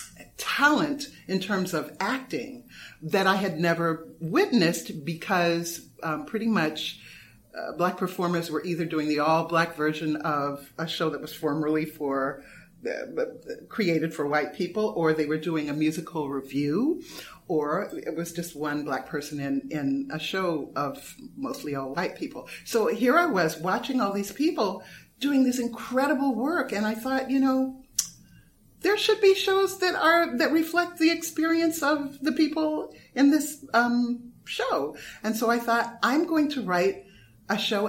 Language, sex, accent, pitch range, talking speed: English, female, American, 160-265 Hz, 160 wpm